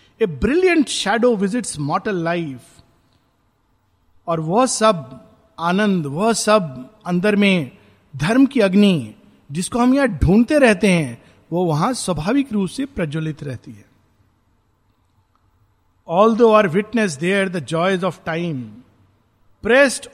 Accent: native